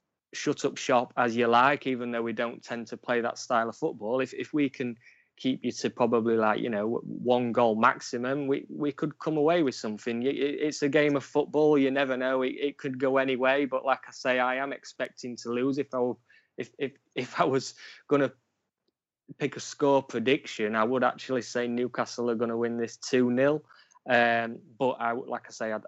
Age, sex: 20-39, male